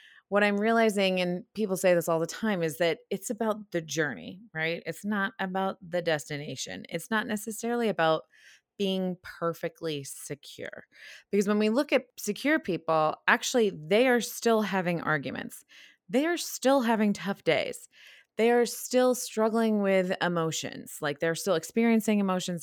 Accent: American